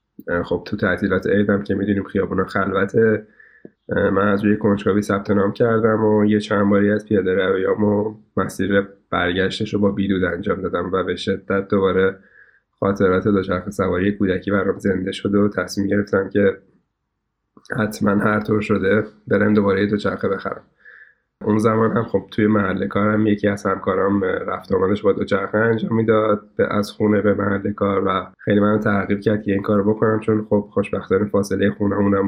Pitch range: 95-105 Hz